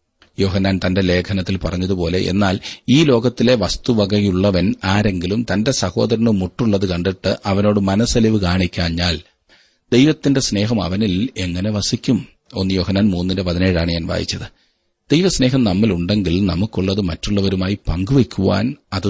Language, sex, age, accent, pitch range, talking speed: Malayalam, male, 30-49, native, 90-115 Hz, 105 wpm